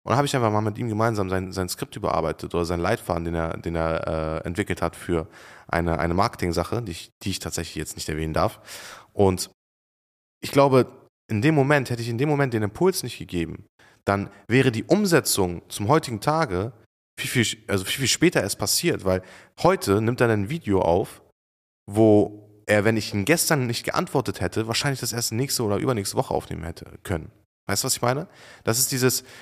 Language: German